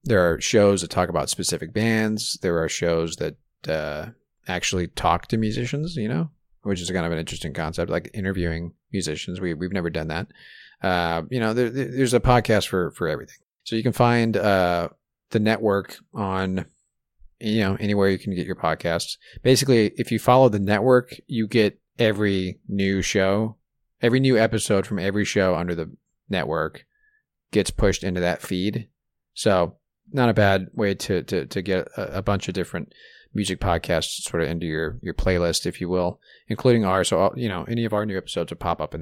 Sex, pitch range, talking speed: male, 90-115 Hz, 190 wpm